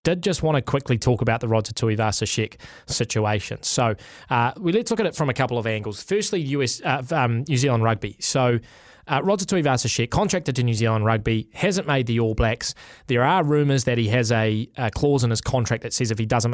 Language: English